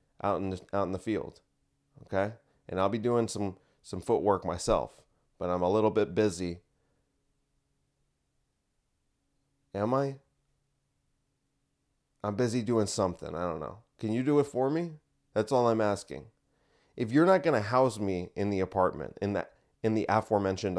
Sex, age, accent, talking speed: male, 30-49, American, 160 wpm